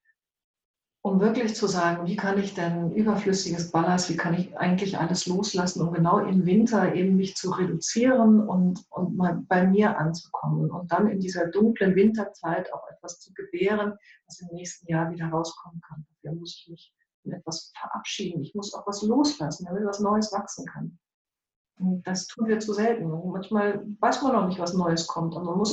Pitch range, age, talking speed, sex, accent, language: 175-210 Hz, 50-69, 190 wpm, female, German, German